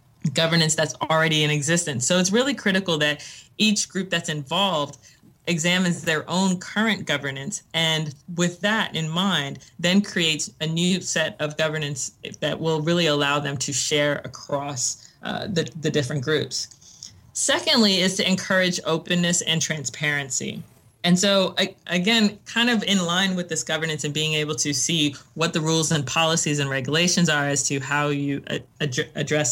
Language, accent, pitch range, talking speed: English, American, 150-180 Hz, 160 wpm